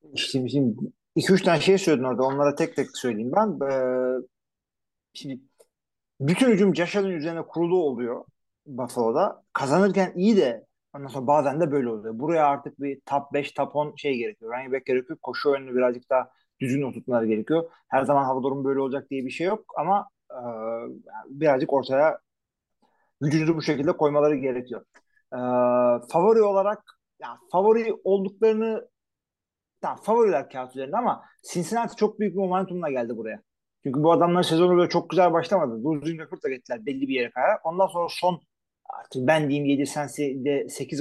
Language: Turkish